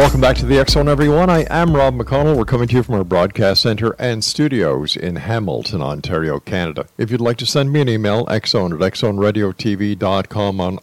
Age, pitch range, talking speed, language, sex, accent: 50-69, 105-130 Hz, 200 wpm, English, male, American